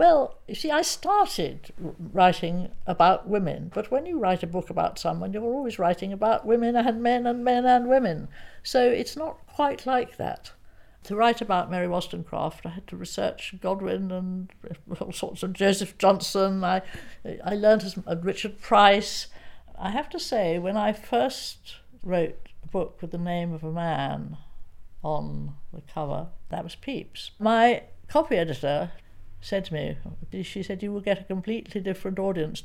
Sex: female